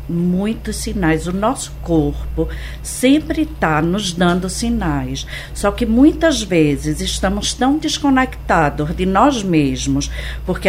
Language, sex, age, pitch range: Portuguese, female, 50-69, 165-240 Hz